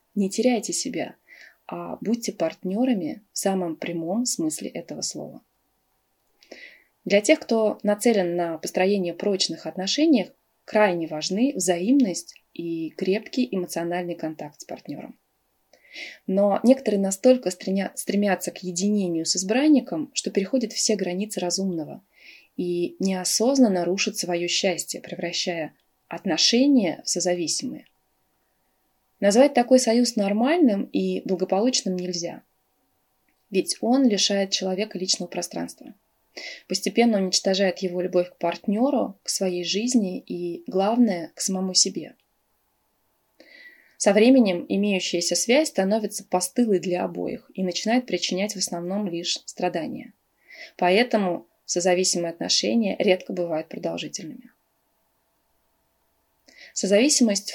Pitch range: 180-230 Hz